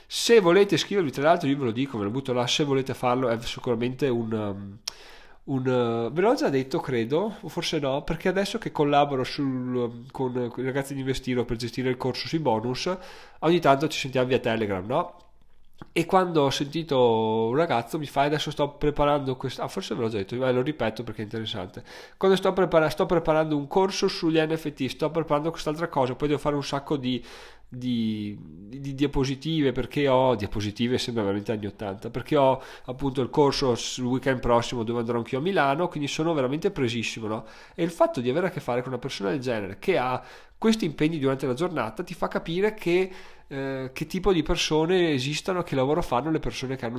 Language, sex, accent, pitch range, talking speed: Italian, male, native, 125-160 Hz, 205 wpm